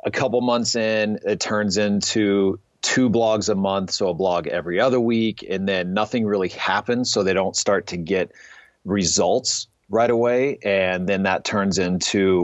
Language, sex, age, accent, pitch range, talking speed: English, male, 30-49, American, 95-110 Hz, 175 wpm